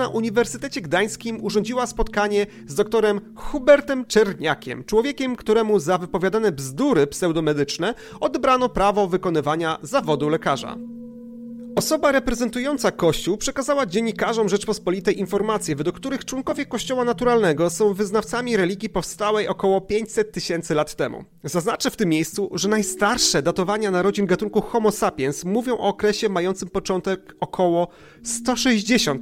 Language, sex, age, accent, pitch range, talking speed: Polish, male, 30-49, native, 180-235 Hz, 120 wpm